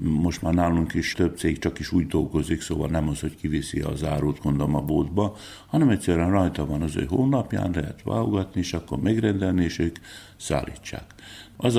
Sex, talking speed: male, 180 wpm